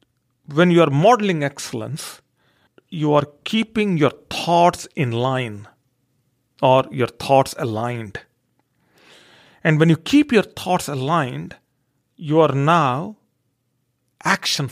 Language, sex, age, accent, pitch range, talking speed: English, male, 40-59, Indian, 140-210 Hz, 110 wpm